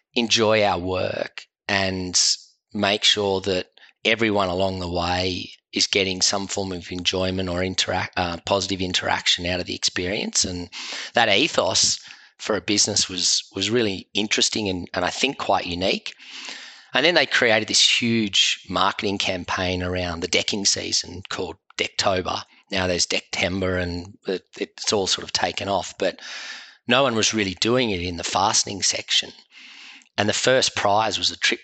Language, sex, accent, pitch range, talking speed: English, male, Australian, 90-110 Hz, 160 wpm